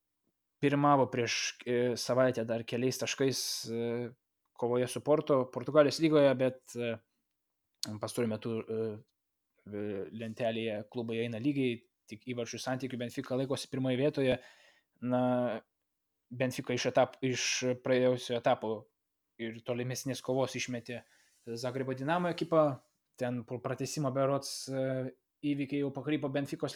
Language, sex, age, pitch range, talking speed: English, male, 20-39, 120-135 Hz, 100 wpm